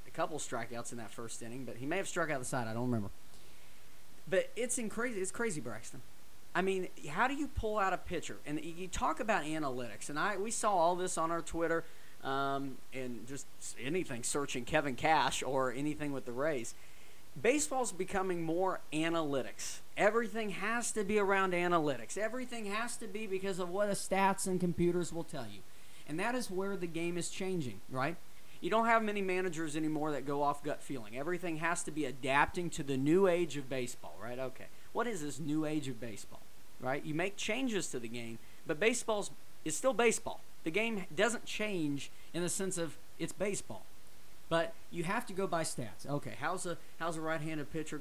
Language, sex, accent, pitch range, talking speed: English, male, American, 135-185 Hz, 195 wpm